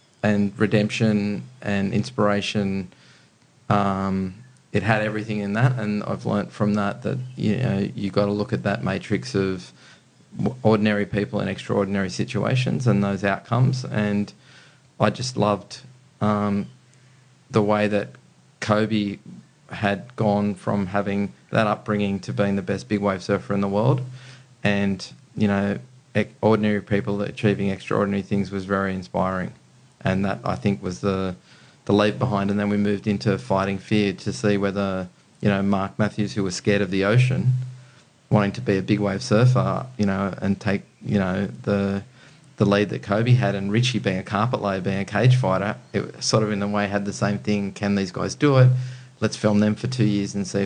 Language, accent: English, Australian